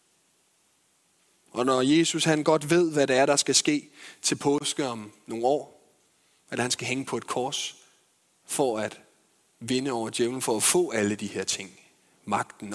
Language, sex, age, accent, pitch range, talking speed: Danish, male, 30-49, native, 115-145 Hz, 175 wpm